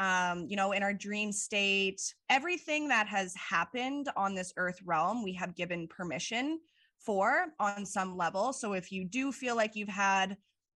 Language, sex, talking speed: English, female, 175 wpm